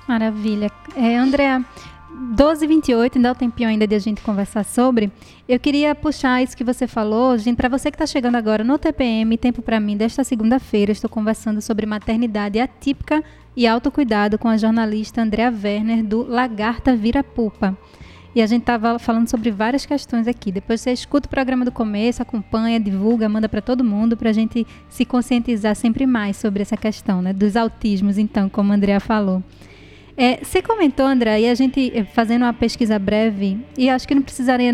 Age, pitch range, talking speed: 20-39, 215-255 Hz, 185 wpm